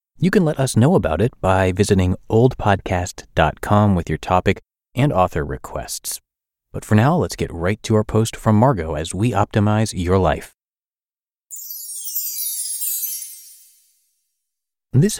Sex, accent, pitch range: male, American, 80-120 Hz